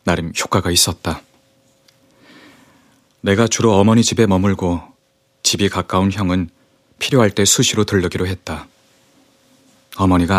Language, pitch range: Korean, 95-110 Hz